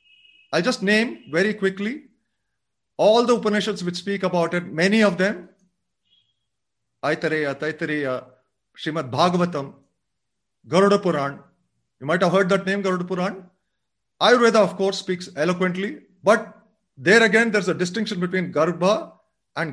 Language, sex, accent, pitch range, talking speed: English, male, Indian, 160-210 Hz, 130 wpm